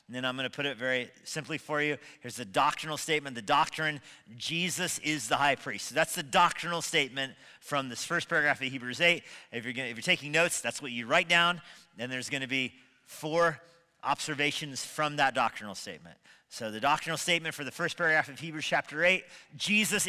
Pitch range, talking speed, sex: 110-145 Hz, 195 wpm, male